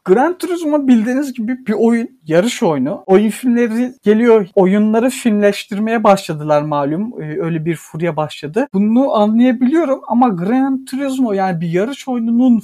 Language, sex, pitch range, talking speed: Turkish, male, 190-230 Hz, 135 wpm